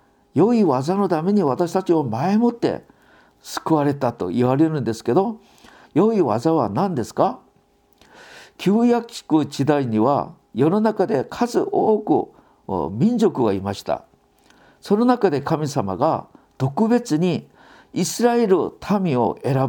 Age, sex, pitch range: 50-69, male, 140-210 Hz